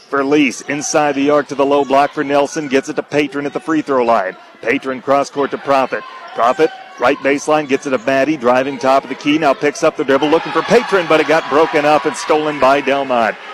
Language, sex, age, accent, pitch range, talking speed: English, male, 40-59, American, 135-155 Hz, 240 wpm